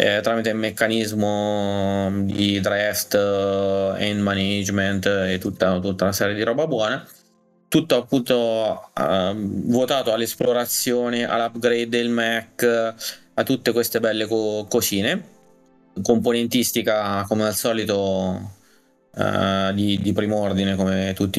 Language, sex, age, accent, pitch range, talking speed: Italian, male, 20-39, native, 100-120 Hz, 120 wpm